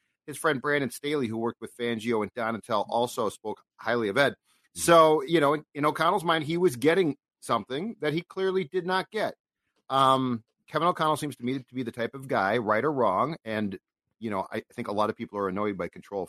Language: English